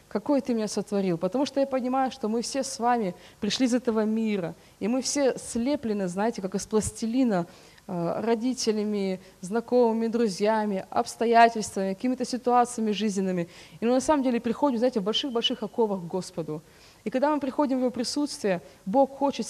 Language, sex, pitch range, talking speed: Russian, female, 200-250 Hz, 165 wpm